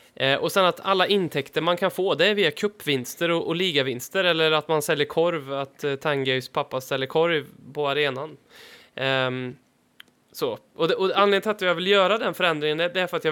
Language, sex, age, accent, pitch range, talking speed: Swedish, male, 20-39, native, 140-180 Hz, 220 wpm